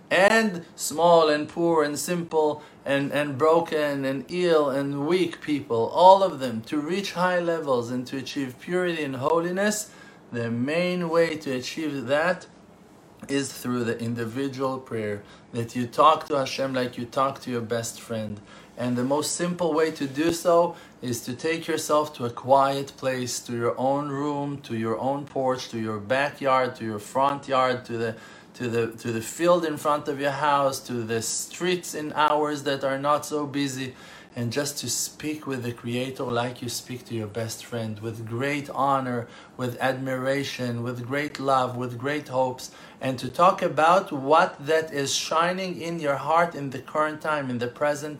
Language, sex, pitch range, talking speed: English, male, 125-160 Hz, 180 wpm